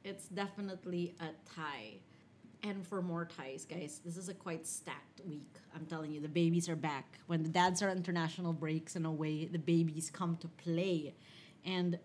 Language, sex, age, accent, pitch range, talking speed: English, female, 30-49, Filipino, 160-185 Hz, 185 wpm